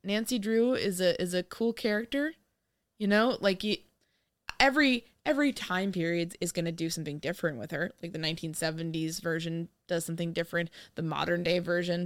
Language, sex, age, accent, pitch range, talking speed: English, female, 20-39, American, 165-225 Hz, 175 wpm